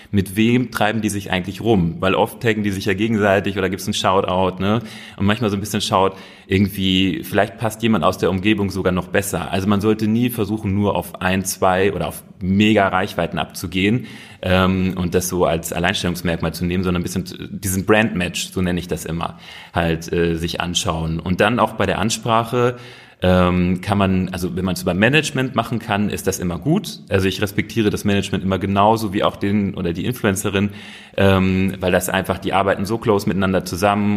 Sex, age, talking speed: male, 30-49, 200 wpm